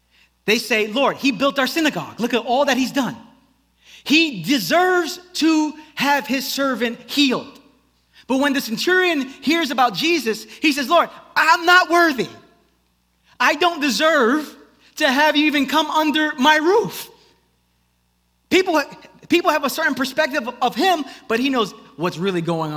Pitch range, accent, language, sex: 220-310 Hz, American, English, male